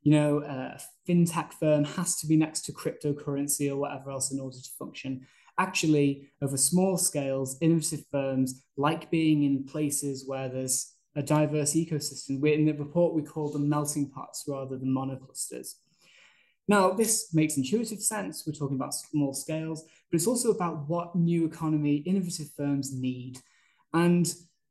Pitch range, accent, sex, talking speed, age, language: 140-165 Hz, British, male, 160 wpm, 20-39, English